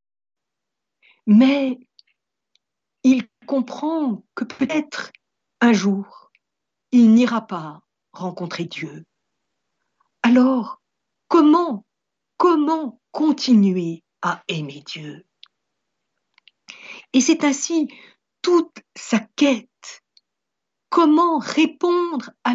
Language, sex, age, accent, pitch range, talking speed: French, female, 60-79, French, 190-290 Hz, 75 wpm